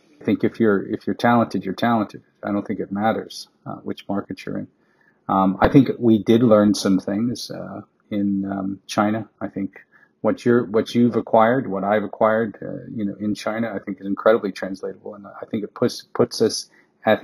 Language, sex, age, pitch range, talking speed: English, male, 40-59, 100-115 Hz, 205 wpm